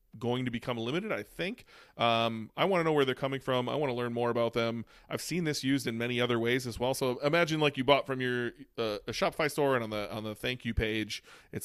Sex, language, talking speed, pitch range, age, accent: male, English, 270 wpm, 110-130 Hz, 30-49, American